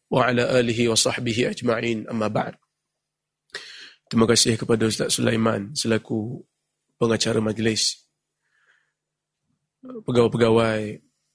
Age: 20-39